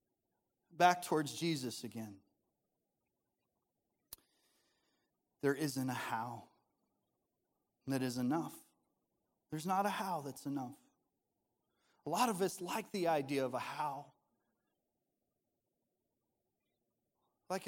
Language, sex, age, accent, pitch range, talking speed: English, male, 30-49, American, 125-150 Hz, 95 wpm